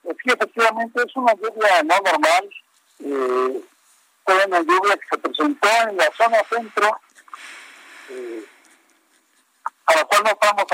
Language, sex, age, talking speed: Spanish, male, 50-69, 135 wpm